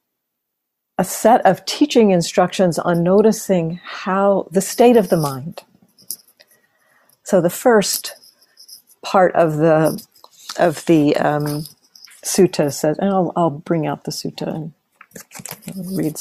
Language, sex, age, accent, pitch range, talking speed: English, female, 50-69, American, 155-195 Hz, 120 wpm